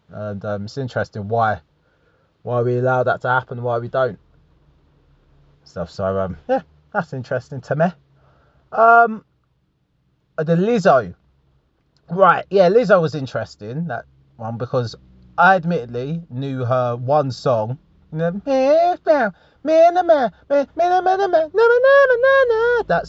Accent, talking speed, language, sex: British, 105 wpm, English, male